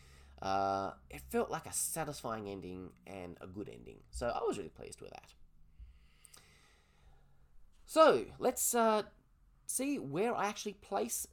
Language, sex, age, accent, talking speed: English, male, 20-39, Australian, 140 wpm